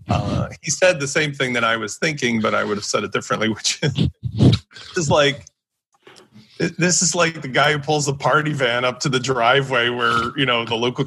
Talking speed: 215 wpm